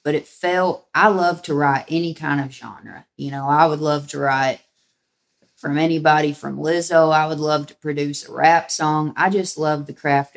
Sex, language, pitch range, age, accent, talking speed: female, English, 140-160 Hz, 30-49, American, 205 wpm